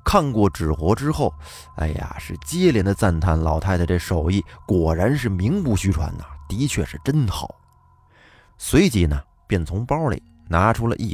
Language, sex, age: Chinese, male, 30-49